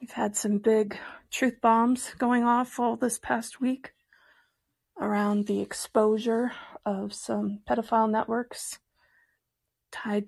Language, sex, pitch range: English, female, 205-245 Hz